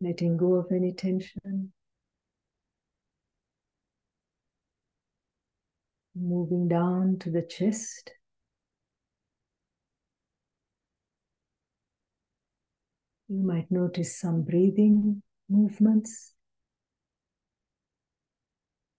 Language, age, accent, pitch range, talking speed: English, 60-79, Indian, 170-195 Hz, 50 wpm